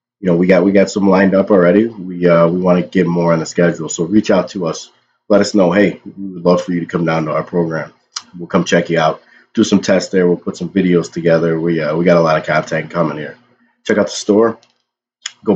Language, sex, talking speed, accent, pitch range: English, male, 260 wpm, American, 85-105 Hz